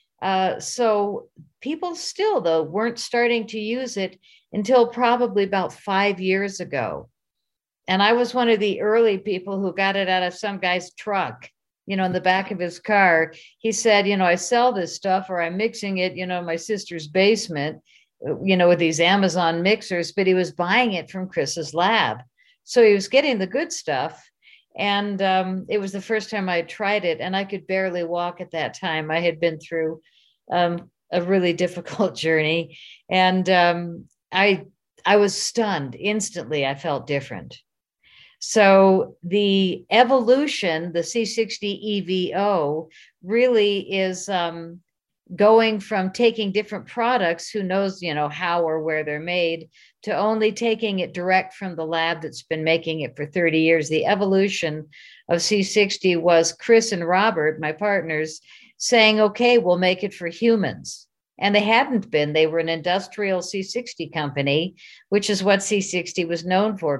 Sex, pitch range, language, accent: female, 170-210 Hz, English, American